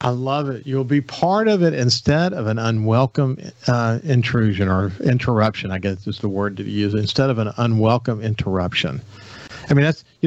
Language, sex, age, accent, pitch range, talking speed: English, male, 50-69, American, 110-140 Hz, 185 wpm